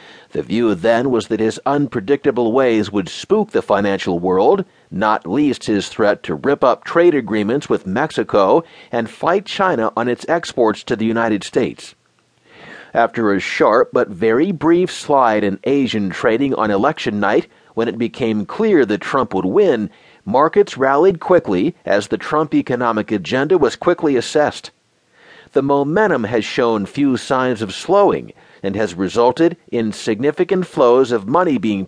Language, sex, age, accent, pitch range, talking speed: English, male, 40-59, American, 110-155 Hz, 155 wpm